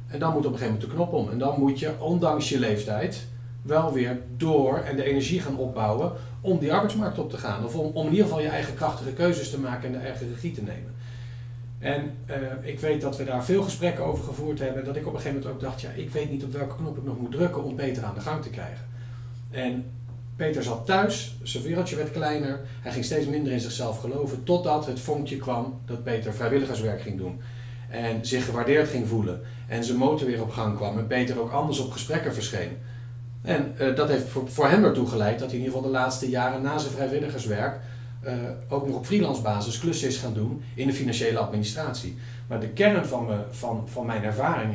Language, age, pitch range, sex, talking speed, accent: Dutch, 40-59, 120-140 Hz, male, 230 wpm, Dutch